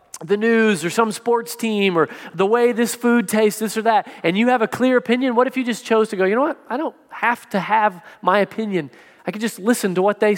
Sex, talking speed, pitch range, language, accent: male, 260 wpm, 165-230 Hz, English, American